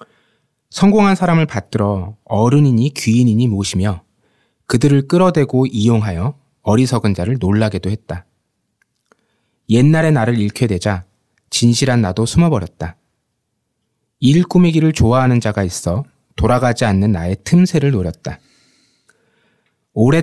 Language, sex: Korean, male